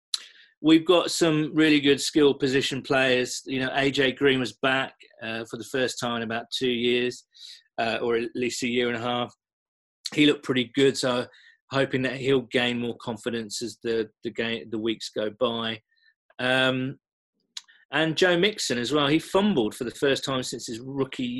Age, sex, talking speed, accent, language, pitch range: 40-59, male, 185 wpm, British, English, 115-150 Hz